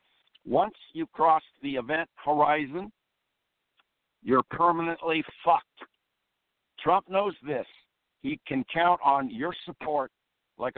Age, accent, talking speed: 60-79, American, 105 wpm